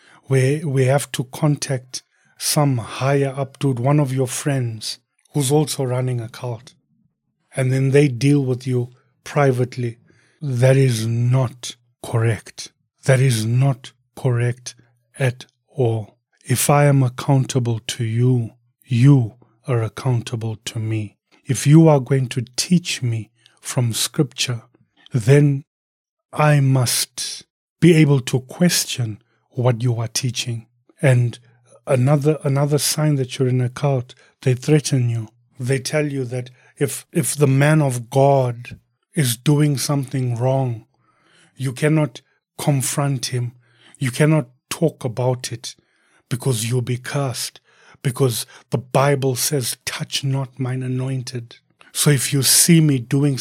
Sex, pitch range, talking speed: male, 125-145 Hz, 135 wpm